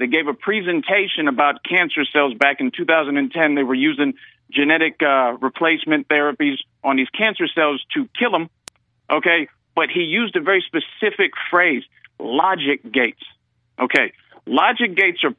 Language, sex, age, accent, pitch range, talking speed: English, male, 50-69, American, 150-205 Hz, 150 wpm